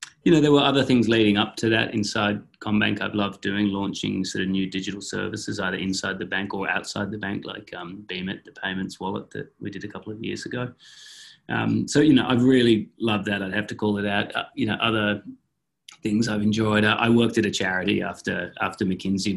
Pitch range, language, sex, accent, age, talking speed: 90-110 Hz, English, male, Australian, 20-39, 225 wpm